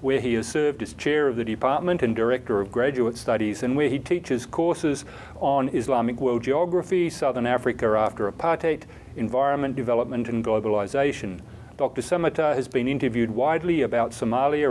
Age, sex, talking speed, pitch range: 40-59, male, 160 wpm, 115-150 Hz